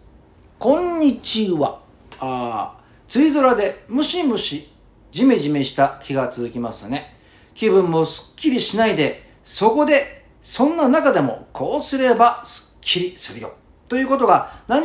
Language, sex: Japanese, male